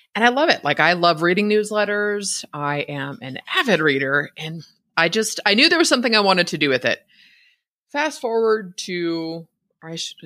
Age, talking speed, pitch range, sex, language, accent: 30-49, 195 wpm, 150-225 Hz, female, English, American